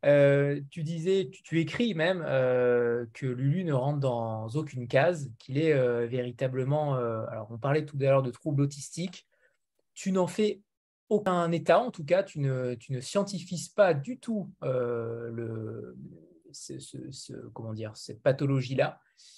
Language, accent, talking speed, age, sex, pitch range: French, French, 165 wpm, 20-39, male, 130-185 Hz